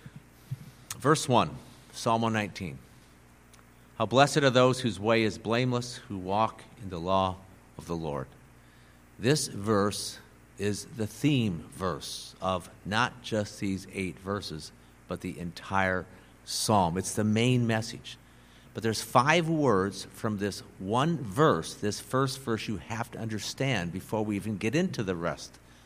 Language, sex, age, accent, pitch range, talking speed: English, male, 50-69, American, 95-120 Hz, 145 wpm